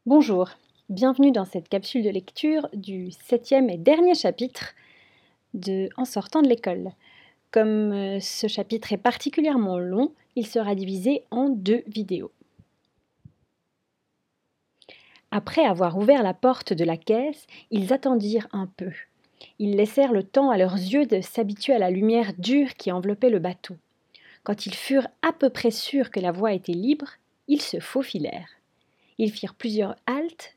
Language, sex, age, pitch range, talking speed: French, female, 30-49, 195-265 Hz, 150 wpm